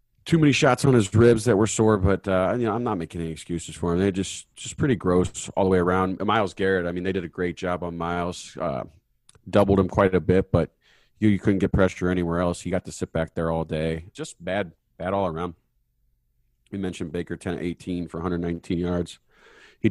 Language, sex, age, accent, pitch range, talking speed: English, male, 30-49, American, 85-105 Hz, 230 wpm